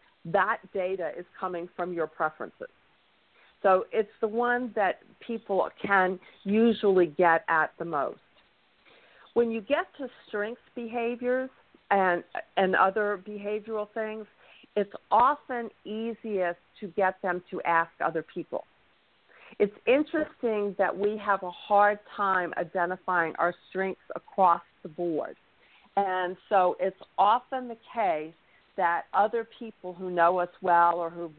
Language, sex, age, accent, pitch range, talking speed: English, female, 50-69, American, 175-215 Hz, 130 wpm